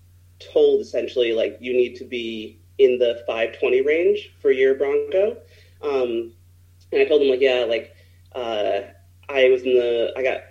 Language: English